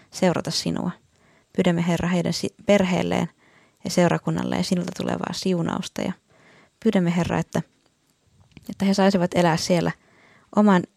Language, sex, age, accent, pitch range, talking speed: Finnish, female, 20-39, native, 170-205 Hz, 120 wpm